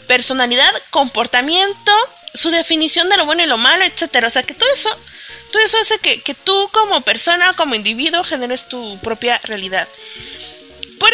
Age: 30-49